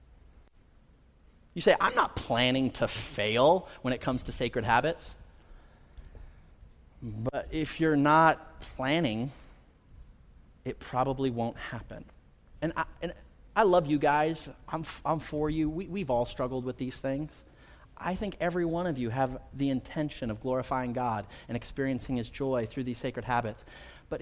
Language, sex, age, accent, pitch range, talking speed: English, male, 30-49, American, 115-185 Hz, 155 wpm